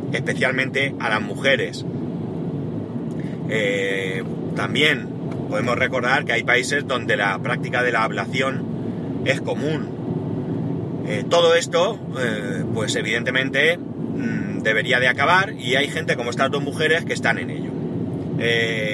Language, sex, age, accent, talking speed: Spanish, male, 30-49, Spanish, 130 wpm